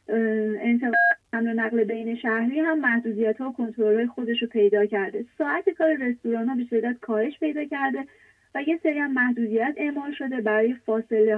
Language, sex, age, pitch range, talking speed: English, female, 30-49, 215-260 Hz, 170 wpm